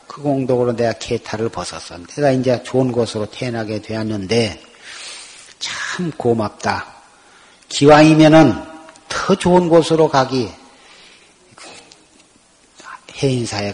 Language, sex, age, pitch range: Korean, male, 40-59, 115-160 Hz